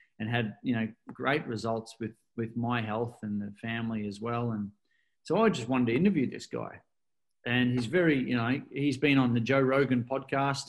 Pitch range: 115-130 Hz